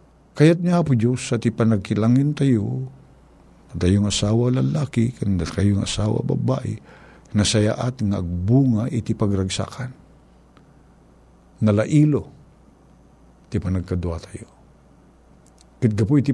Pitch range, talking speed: 85-115 Hz, 90 wpm